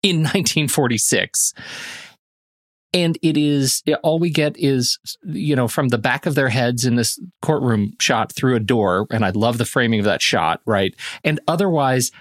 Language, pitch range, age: English, 115-145 Hz, 40-59